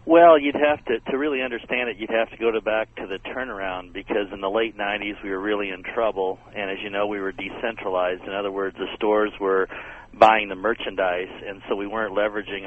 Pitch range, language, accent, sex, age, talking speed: 95-110 Hz, English, American, male, 50-69, 225 wpm